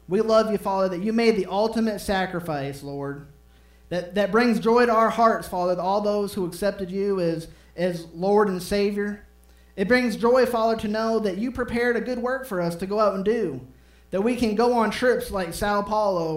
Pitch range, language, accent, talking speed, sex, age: 155-215 Hz, English, American, 215 wpm, male, 20-39